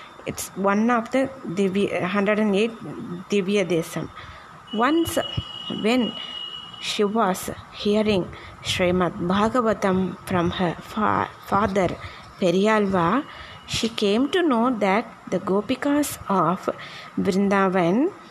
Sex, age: female, 20-39